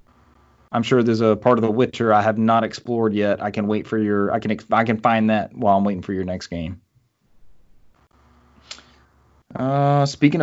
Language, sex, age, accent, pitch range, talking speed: English, male, 30-49, American, 105-125 Hz, 195 wpm